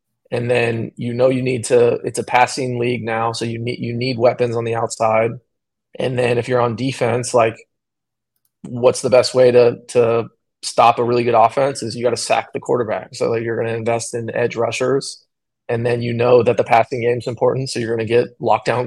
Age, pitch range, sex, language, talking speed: 20-39, 115-130 Hz, male, English, 230 wpm